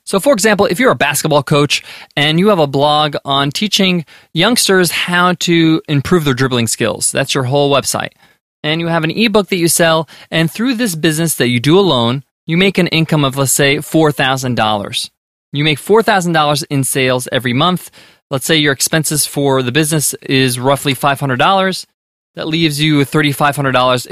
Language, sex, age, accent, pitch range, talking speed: English, male, 20-39, American, 145-195 Hz, 180 wpm